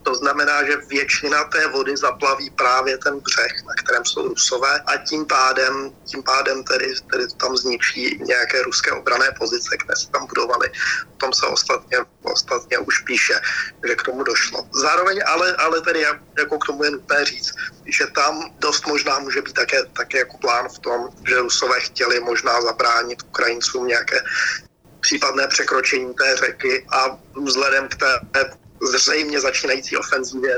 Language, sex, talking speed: Slovak, male, 160 wpm